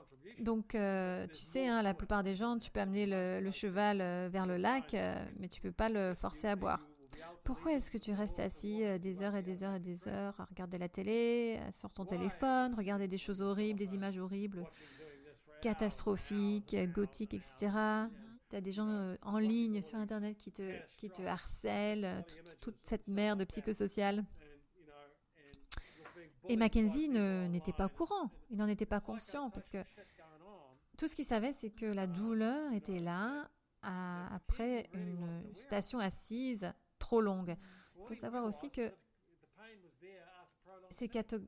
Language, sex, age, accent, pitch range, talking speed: French, female, 30-49, French, 185-225 Hz, 165 wpm